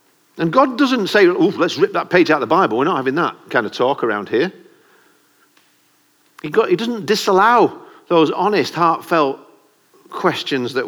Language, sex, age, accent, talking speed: English, male, 50-69, British, 170 wpm